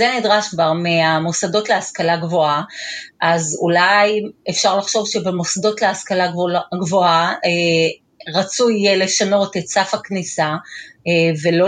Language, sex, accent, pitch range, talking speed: Hebrew, female, native, 185-255 Hz, 100 wpm